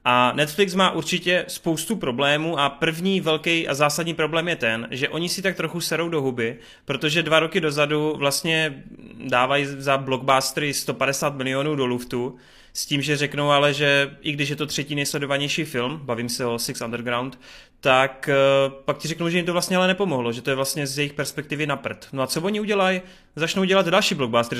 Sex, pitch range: male, 135-170 Hz